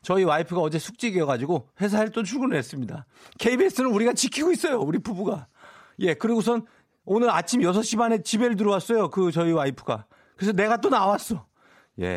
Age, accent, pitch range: 40-59, native, 125-210 Hz